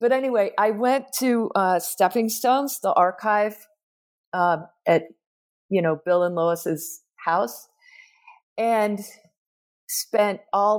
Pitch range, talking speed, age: 180-240 Hz, 115 wpm, 50-69